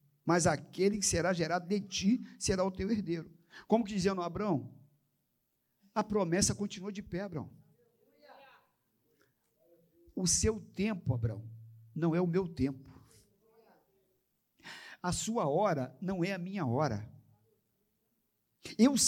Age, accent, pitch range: 50-69, Brazilian, 155-215 Hz